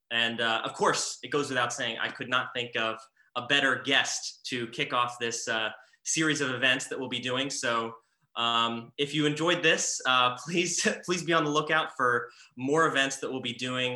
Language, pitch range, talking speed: English, 120-145 Hz, 205 wpm